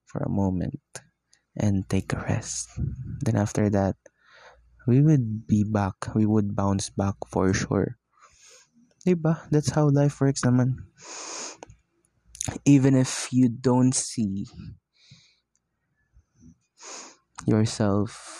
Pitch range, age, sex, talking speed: 100-125 Hz, 20-39, male, 100 wpm